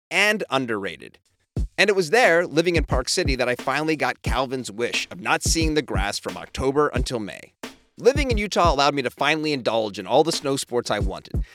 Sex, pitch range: male, 125-185 Hz